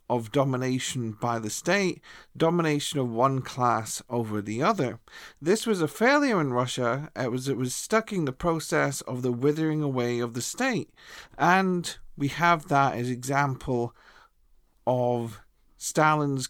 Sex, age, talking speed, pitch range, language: male, 40-59, 145 wpm, 125-175 Hz, English